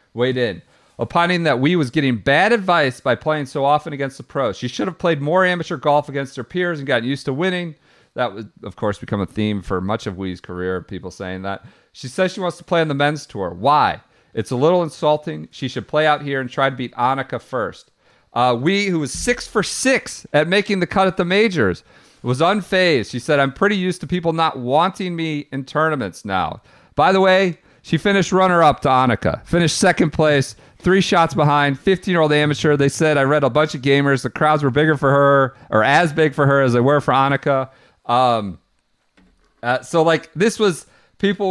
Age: 40-59